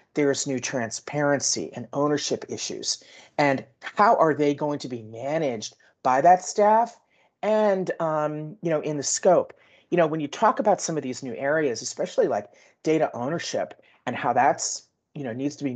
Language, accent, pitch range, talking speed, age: English, American, 135-175 Hz, 185 wpm, 40-59